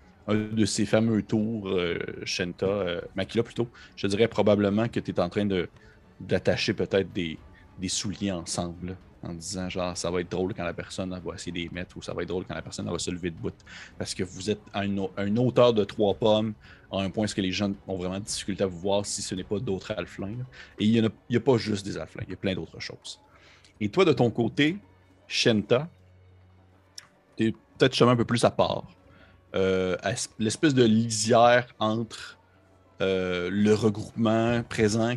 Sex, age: male, 30-49